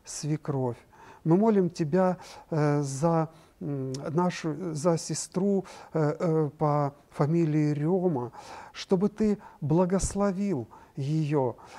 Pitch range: 150-185 Hz